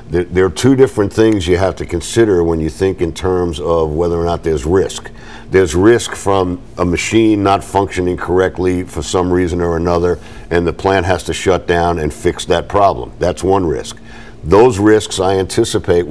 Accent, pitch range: American, 90-115 Hz